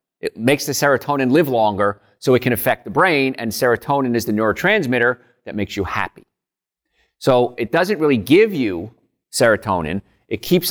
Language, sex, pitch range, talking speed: English, male, 120-165 Hz, 170 wpm